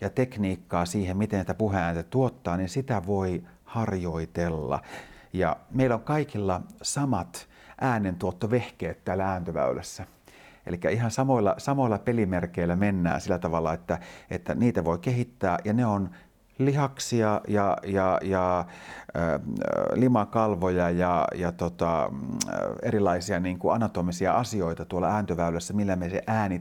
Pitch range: 90-120 Hz